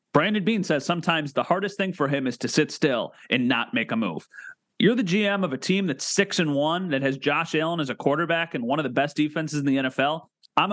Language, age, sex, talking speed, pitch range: English, 30-49, male, 250 wpm, 145-195 Hz